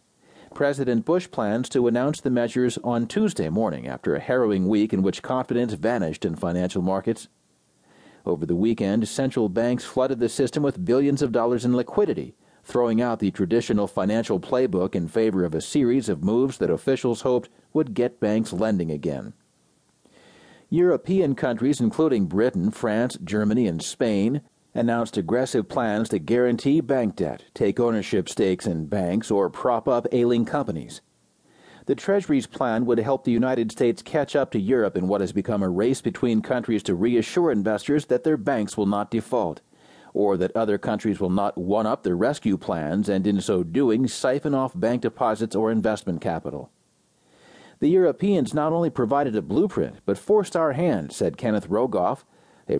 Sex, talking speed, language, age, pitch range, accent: male, 165 wpm, English, 40-59, 105-130 Hz, American